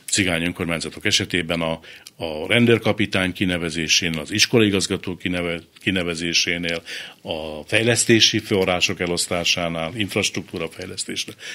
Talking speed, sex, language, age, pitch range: 85 wpm, male, Hungarian, 60-79, 90-120 Hz